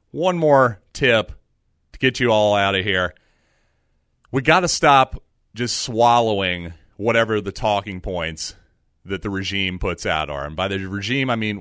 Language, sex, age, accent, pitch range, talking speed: English, male, 40-59, American, 90-125 Hz, 165 wpm